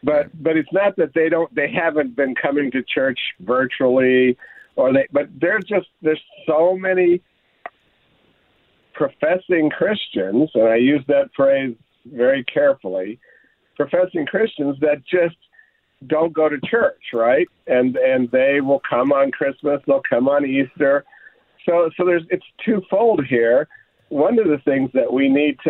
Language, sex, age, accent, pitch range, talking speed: English, male, 50-69, American, 135-175 Hz, 150 wpm